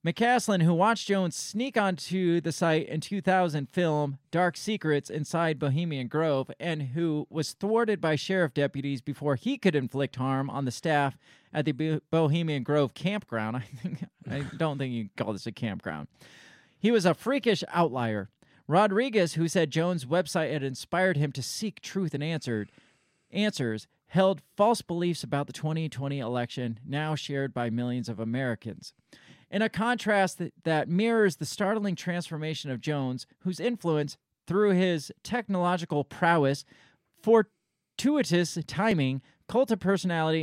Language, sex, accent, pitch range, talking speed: English, male, American, 135-185 Hz, 150 wpm